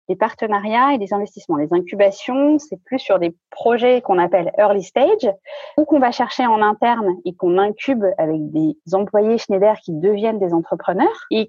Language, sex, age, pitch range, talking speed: French, female, 30-49, 200-280 Hz, 180 wpm